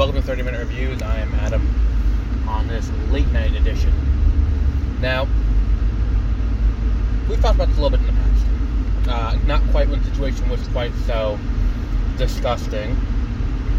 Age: 20-39